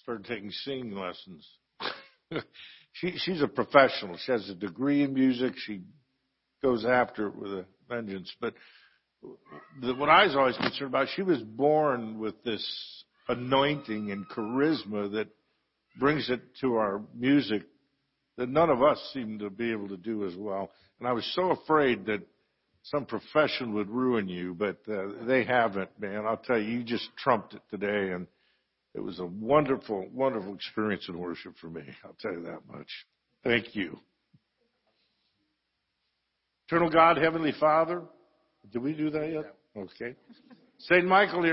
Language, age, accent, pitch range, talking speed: English, 60-79, American, 105-155 Hz, 155 wpm